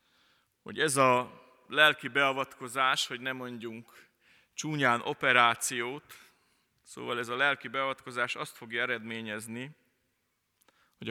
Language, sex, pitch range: Hungarian, male, 115-140 Hz